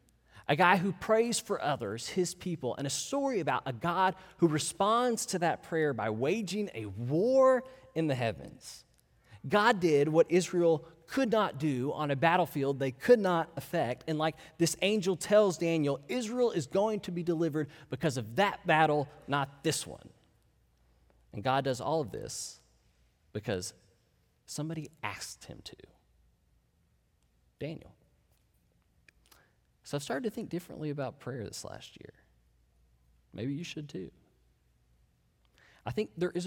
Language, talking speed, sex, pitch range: English, 150 wpm, male, 100-165 Hz